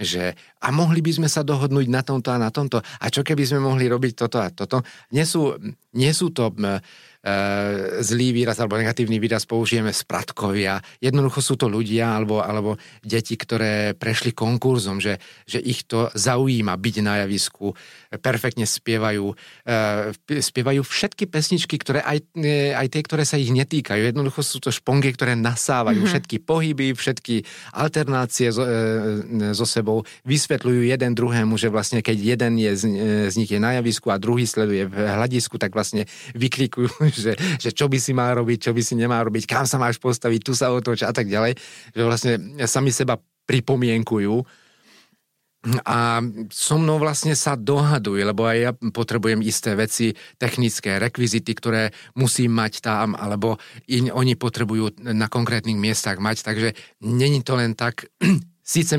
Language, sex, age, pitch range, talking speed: Slovak, male, 40-59, 110-130 Hz, 160 wpm